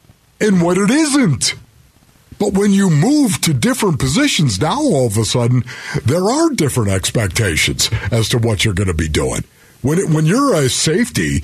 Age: 50-69